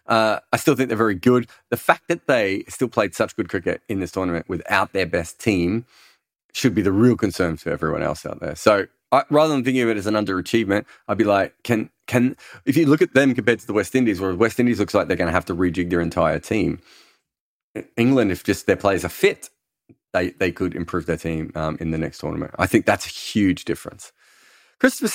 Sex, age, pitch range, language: male, 30-49, 100-130 Hz, English